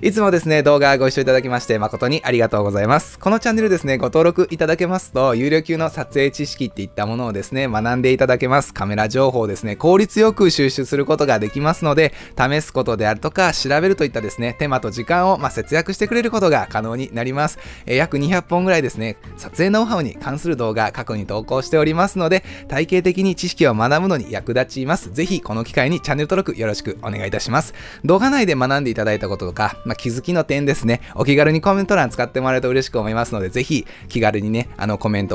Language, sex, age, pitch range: Japanese, male, 20-39, 115-175 Hz